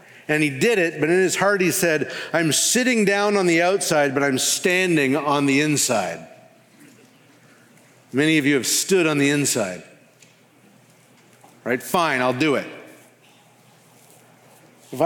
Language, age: English, 50-69